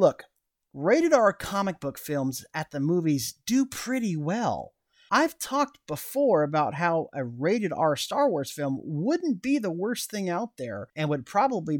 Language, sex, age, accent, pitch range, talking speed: English, male, 30-49, American, 150-235 Hz, 170 wpm